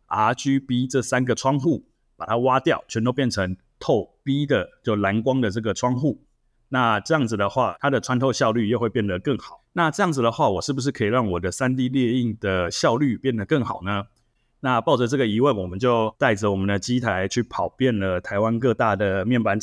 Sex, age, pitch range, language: male, 20-39, 100-125 Hz, Chinese